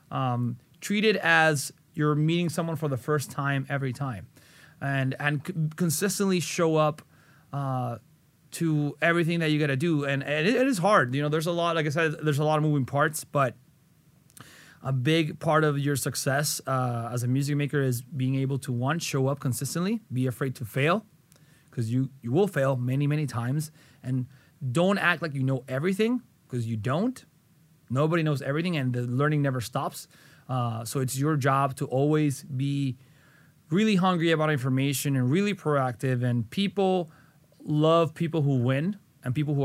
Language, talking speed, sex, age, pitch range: English, 185 wpm, male, 30-49, 135-160 Hz